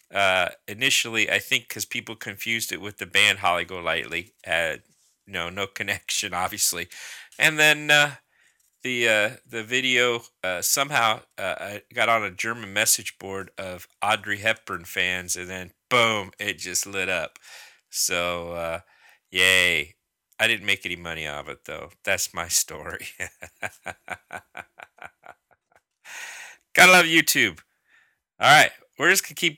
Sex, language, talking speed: male, English, 145 wpm